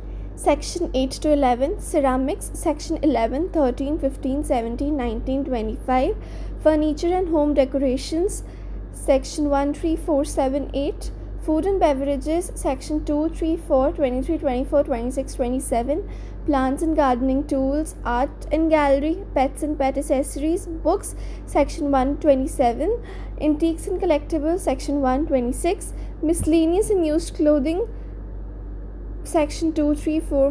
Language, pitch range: English, 275-320 Hz